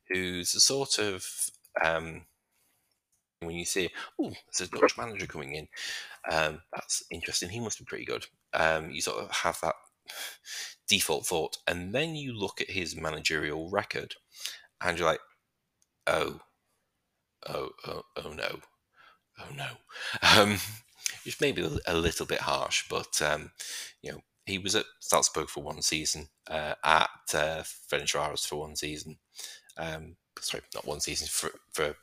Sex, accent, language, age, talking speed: male, British, English, 30-49, 160 wpm